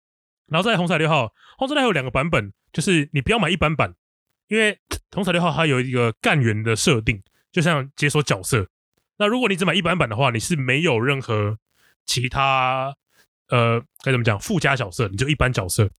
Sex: male